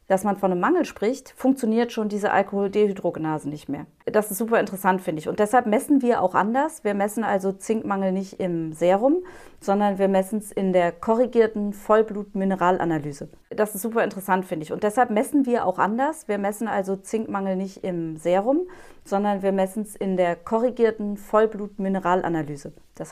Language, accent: German, German